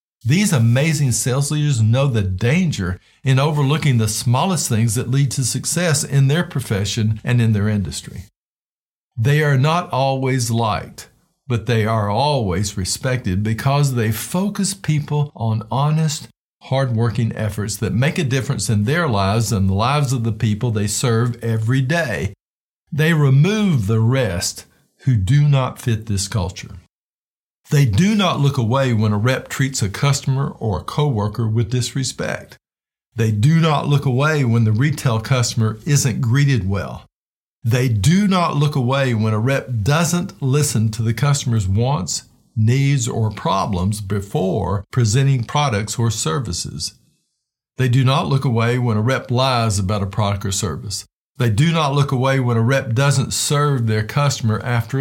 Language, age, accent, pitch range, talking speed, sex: English, 50-69, American, 110-140 Hz, 160 wpm, male